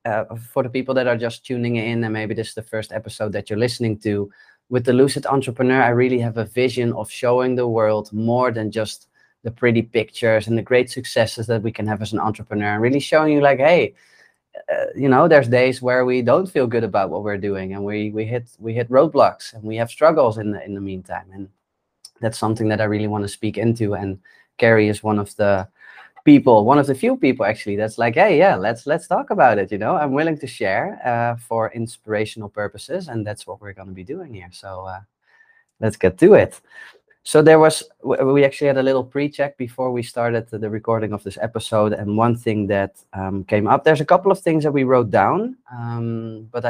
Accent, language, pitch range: Dutch, English, 105-130 Hz